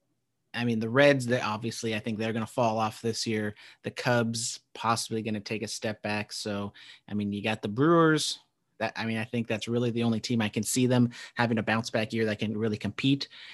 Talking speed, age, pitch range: 240 wpm, 30-49, 110-130 Hz